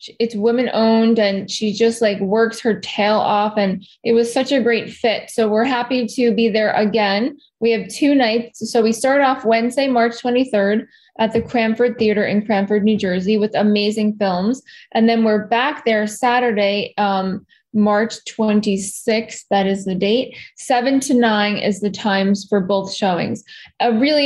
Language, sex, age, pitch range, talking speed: English, female, 10-29, 210-240 Hz, 175 wpm